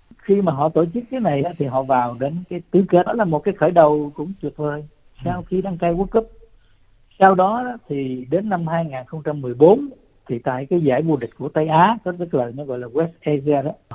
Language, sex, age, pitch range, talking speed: Vietnamese, male, 60-79, 130-180 Hz, 225 wpm